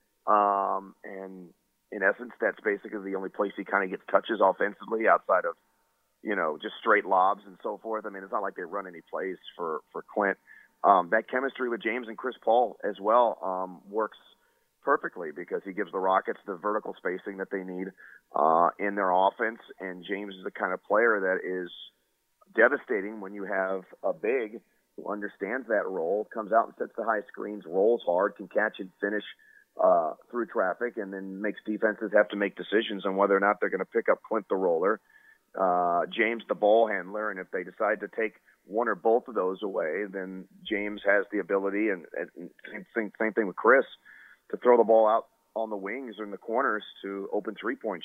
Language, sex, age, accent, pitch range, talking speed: English, male, 30-49, American, 95-115 Hz, 205 wpm